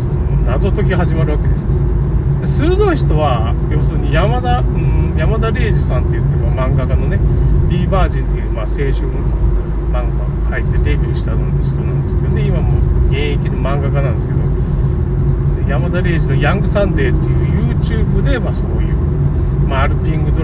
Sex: male